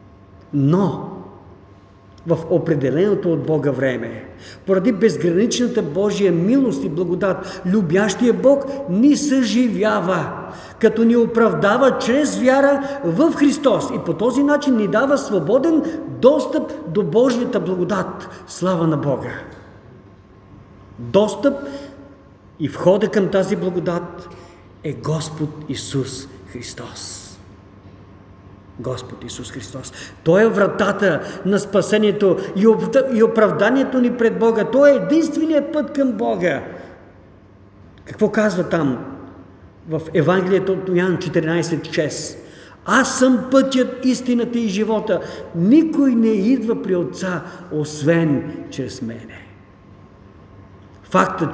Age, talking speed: 50-69, 105 wpm